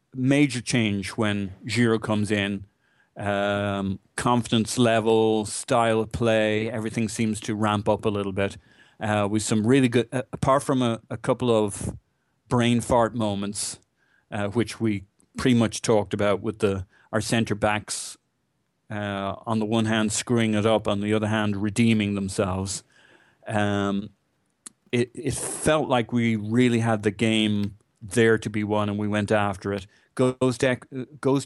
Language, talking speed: English, 160 wpm